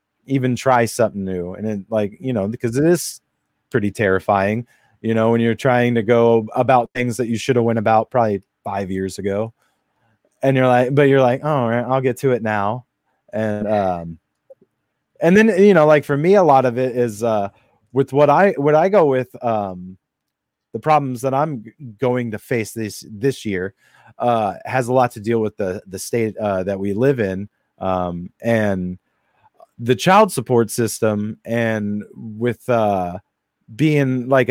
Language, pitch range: English, 105-140 Hz